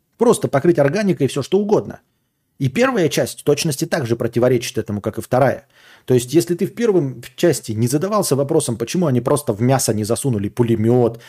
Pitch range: 115-170 Hz